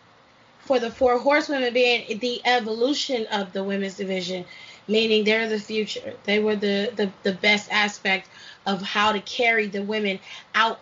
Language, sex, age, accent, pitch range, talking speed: English, female, 20-39, American, 205-250 Hz, 155 wpm